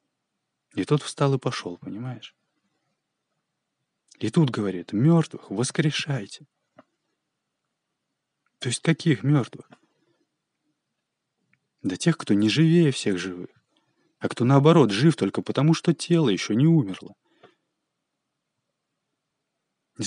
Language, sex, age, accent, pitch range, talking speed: Russian, male, 20-39, native, 115-150 Hz, 105 wpm